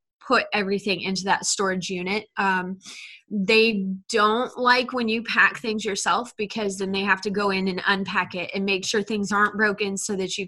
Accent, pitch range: American, 195-220 Hz